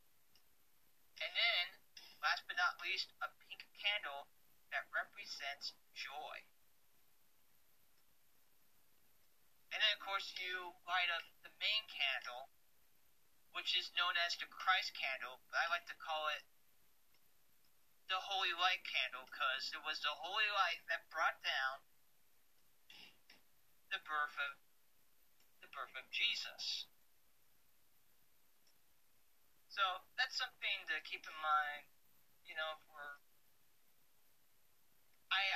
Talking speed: 110 wpm